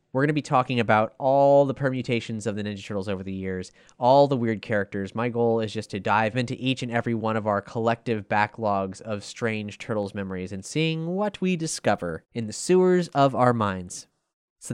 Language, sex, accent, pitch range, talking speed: English, male, American, 105-155 Hz, 210 wpm